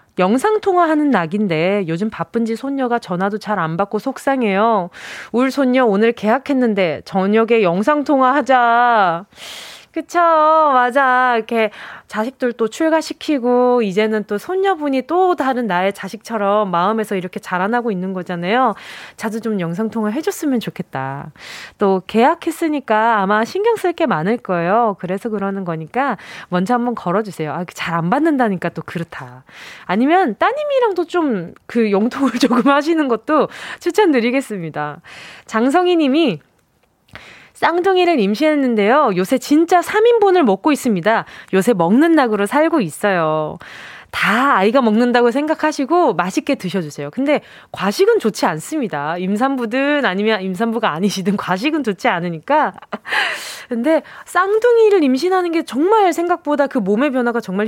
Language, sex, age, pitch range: Korean, female, 20-39, 195-295 Hz